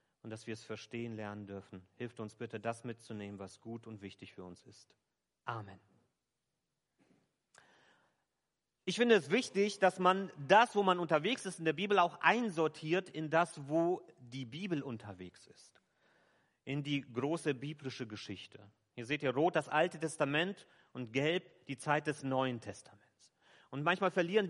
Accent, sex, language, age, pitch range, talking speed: German, male, German, 40-59, 125-165 Hz, 160 wpm